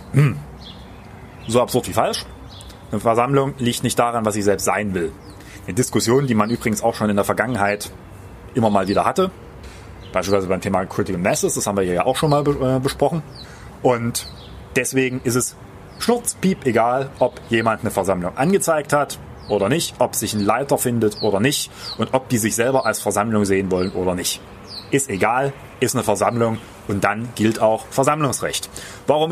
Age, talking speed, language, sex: 30-49, 170 wpm, German, male